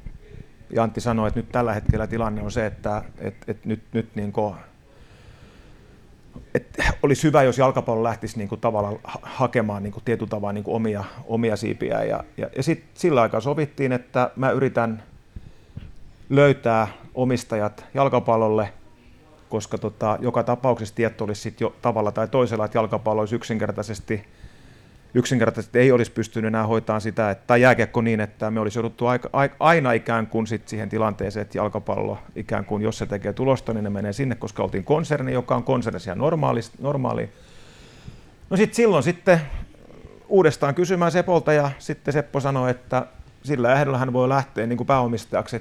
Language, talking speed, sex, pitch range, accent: Finnish, 165 wpm, male, 110-130 Hz, native